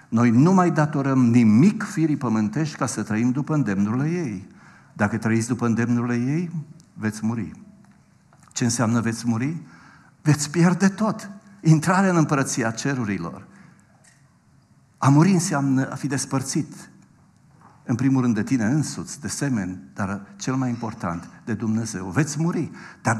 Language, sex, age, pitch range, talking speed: Romanian, male, 60-79, 100-140 Hz, 140 wpm